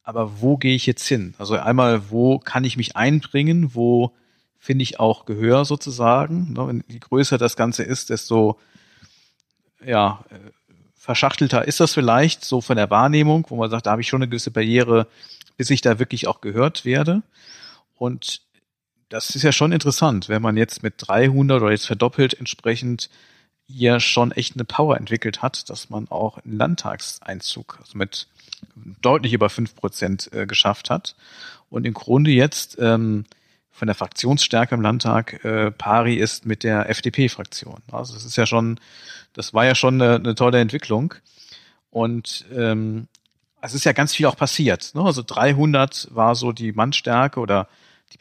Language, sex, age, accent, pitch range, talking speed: German, male, 50-69, German, 110-135 Hz, 165 wpm